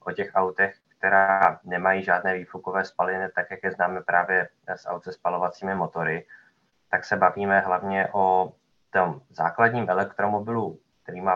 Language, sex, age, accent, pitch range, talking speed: Czech, male, 20-39, native, 90-100 Hz, 145 wpm